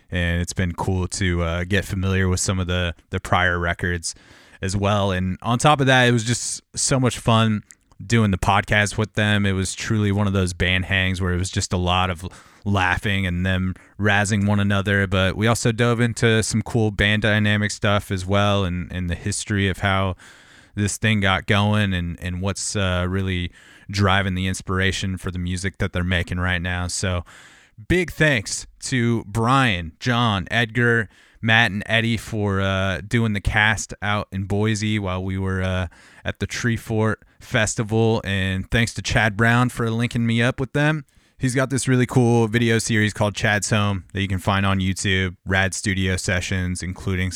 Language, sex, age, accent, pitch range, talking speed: English, male, 30-49, American, 95-115 Hz, 190 wpm